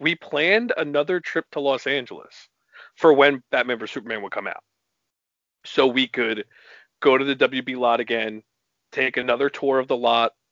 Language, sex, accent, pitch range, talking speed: English, male, American, 120-145 Hz, 170 wpm